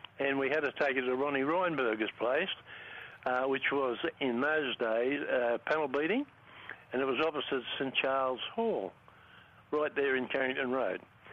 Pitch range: 130-170 Hz